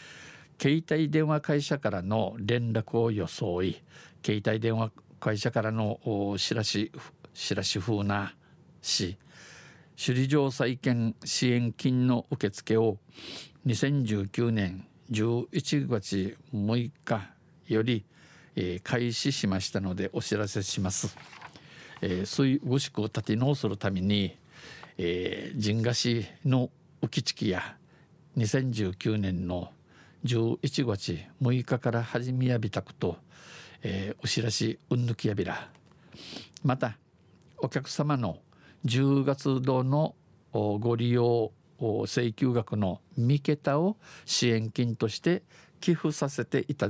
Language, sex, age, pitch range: Japanese, male, 50-69, 105-140 Hz